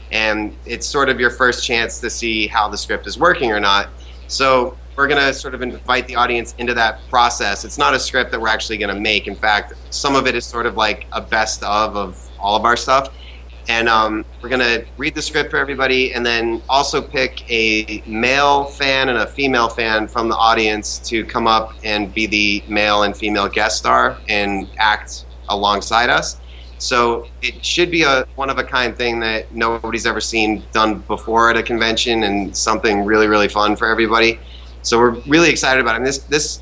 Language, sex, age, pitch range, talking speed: English, male, 30-49, 105-120 Hz, 205 wpm